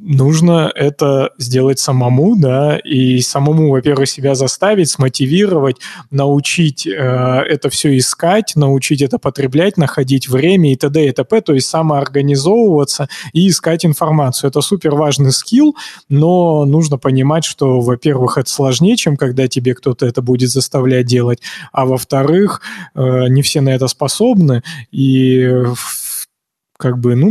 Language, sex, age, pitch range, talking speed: Russian, male, 20-39, 130-155 Hz, 135 wpm